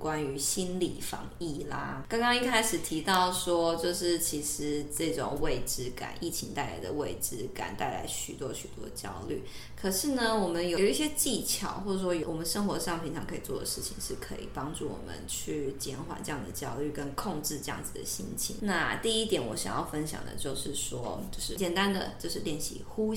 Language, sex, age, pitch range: Chinese, female, 20-39, 155-200 Hz